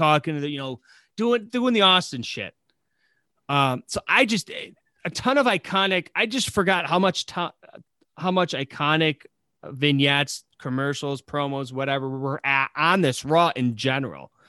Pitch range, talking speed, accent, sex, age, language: 130-170 Hz, 155 wpm, American, male, 30-49, English